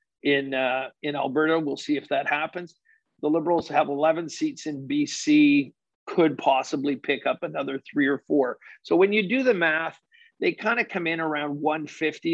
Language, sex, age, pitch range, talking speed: English, male, 50-69, 140-175 Hz, 180 wpm